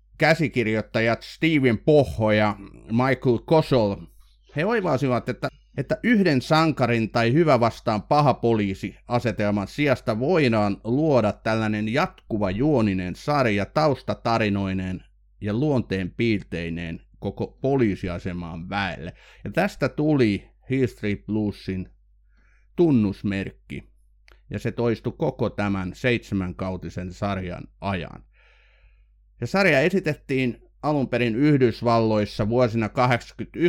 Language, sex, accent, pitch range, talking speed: Finnish, male, native, 95-130 Hz, 95 wpm